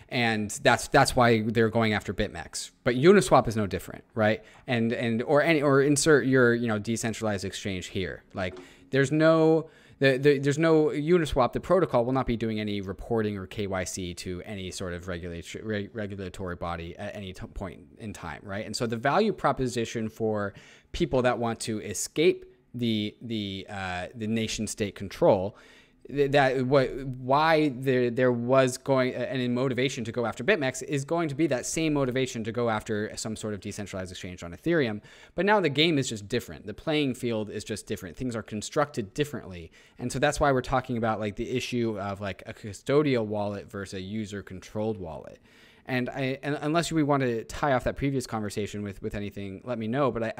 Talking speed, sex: 195 wpm, male